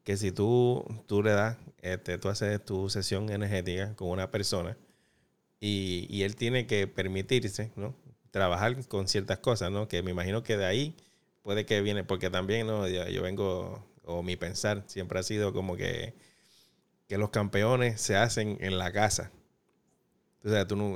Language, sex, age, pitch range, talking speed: English, male, 30-49, 95-115 Hz, 175 wpm